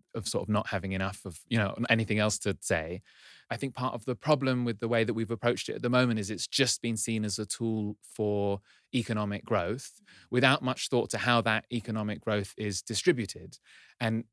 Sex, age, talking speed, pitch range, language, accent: male, 20-39, 215 wpm, 105-125 Hz, English, British